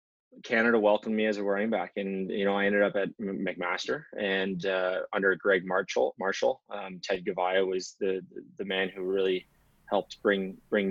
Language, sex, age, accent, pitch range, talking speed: English, male, 20-39, American, 95-105 Hz, 180 wpm